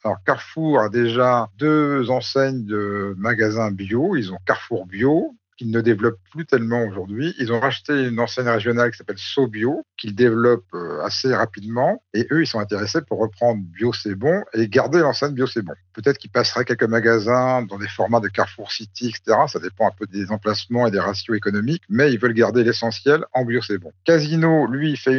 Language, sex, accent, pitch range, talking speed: French, male, French, 105-125 Hz, 195 wpm